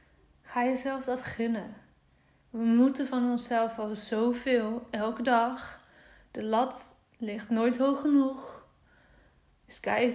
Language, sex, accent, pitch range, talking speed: Dutch, female, Dutch, 210-240 Hz, 110 wpm